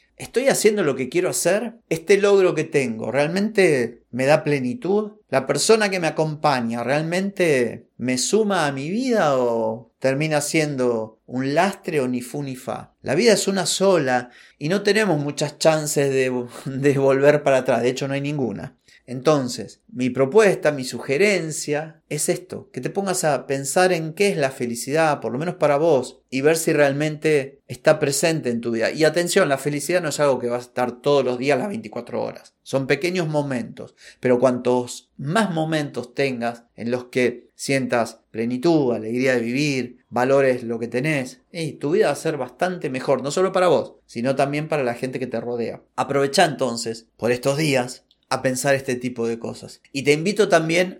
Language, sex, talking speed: Spanish, male, 185 wpm